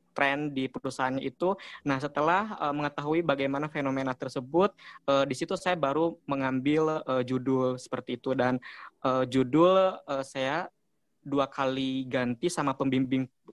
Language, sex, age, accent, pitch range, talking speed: Indonesian, male, 20-39, native, 130-150 Hz, 140 wpm